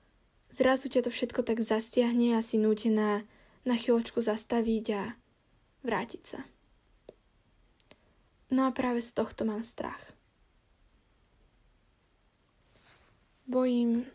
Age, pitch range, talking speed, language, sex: 10-29, 220-255 Hz, 100 wpm, Slovak, female